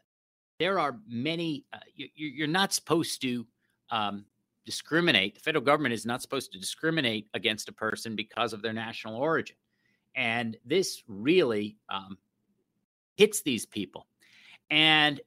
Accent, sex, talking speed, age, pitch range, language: American, male, 135 wpm, 50-69, 115-160 Hz, English